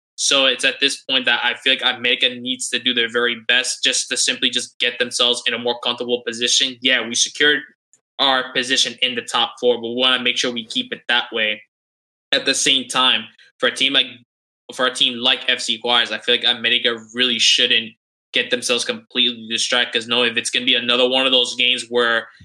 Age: 10-29